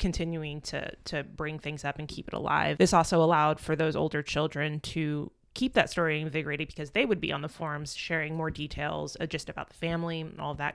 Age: 20-39